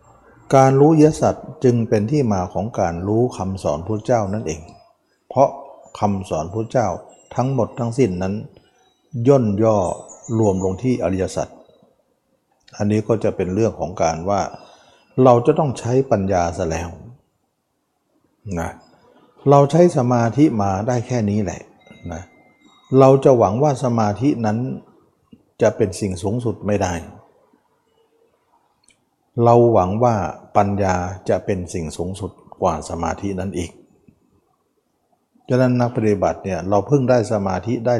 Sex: male